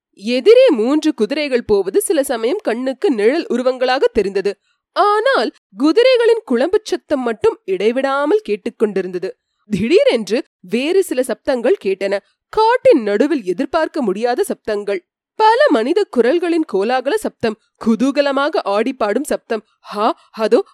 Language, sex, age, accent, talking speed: Tamil, female, 30-49, native, 105 wpm